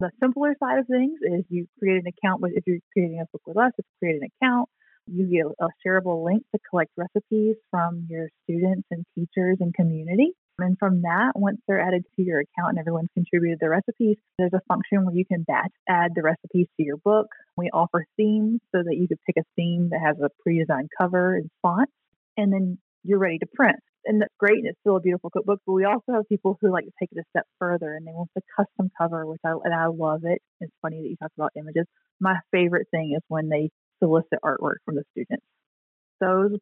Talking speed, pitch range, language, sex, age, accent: 230 wpm, 170-210 Hz, English, female, 30-49, American